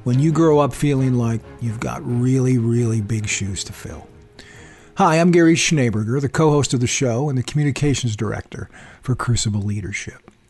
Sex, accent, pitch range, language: male, American, 115-145 Hz, English